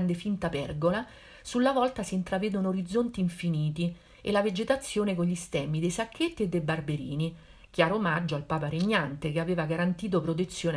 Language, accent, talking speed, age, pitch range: Italian, native, 155 wpm, 50-69, 160-210 Hz